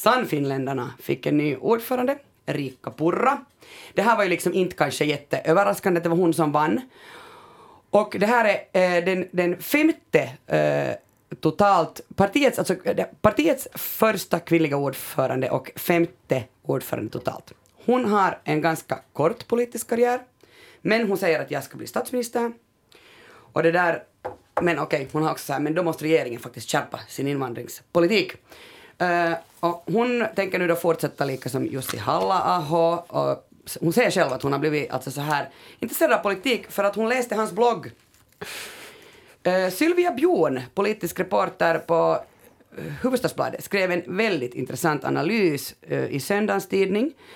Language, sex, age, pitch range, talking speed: Swedish, female, 30-49, 150-220 Hz, 155 wpm